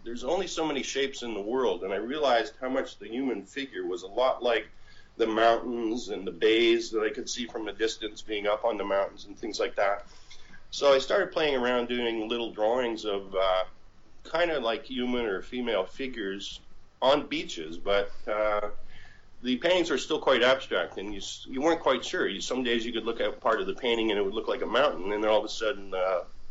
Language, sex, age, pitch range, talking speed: English, male, 50-69, 105-135 Hz, 220 wpm